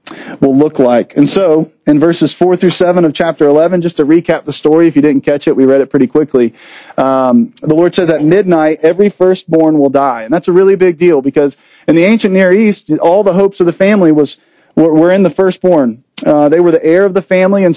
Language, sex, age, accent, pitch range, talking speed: English, male, 40-59, American, 150-185 Hz, 240 wpm